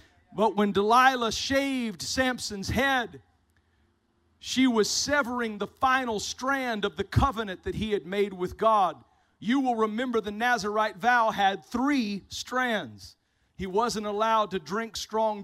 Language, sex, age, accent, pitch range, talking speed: English, male, 40-59, American, 175-230 Hz, 140 wpm